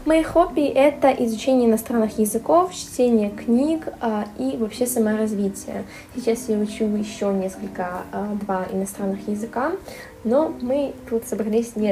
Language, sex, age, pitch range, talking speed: Russian, female, 10-29, 200-250 Hz, 120 wpm